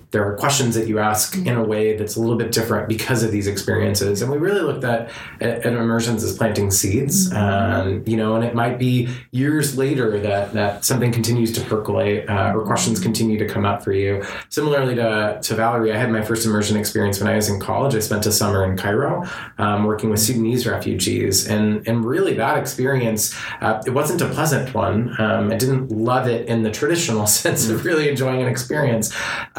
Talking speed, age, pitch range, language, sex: 210 wpm, 20-39, 105-115 Hz, English, male